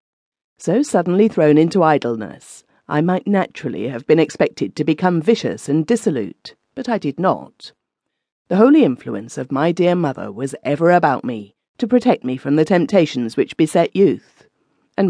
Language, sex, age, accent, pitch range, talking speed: English, female, 40-59, British, 140-195 Hz, 165 wpm